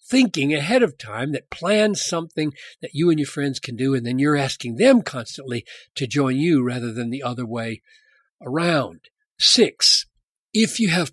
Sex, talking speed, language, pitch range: male, 180 wpm, English, 125-210 Hz